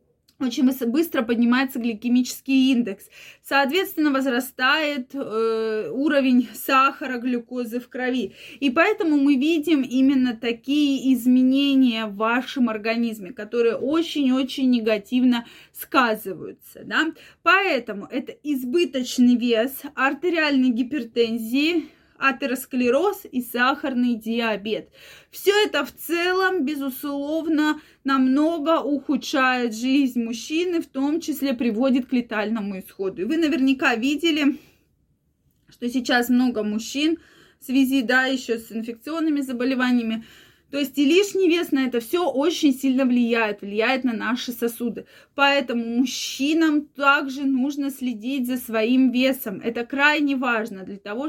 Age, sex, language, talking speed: 20-39, female, Russian, 110 wpm